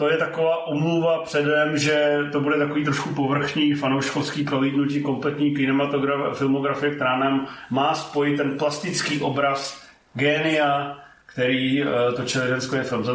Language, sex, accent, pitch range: Czech, male, native, 125-145 Hz